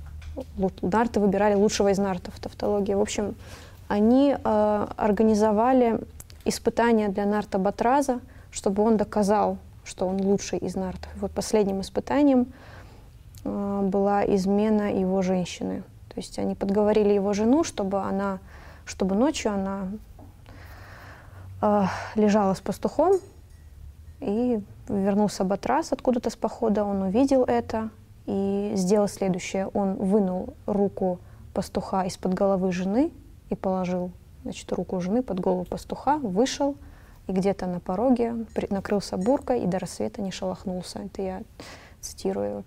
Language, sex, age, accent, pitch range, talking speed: Russian, female, 20-39, native, 185-220 Hz, 125 wpm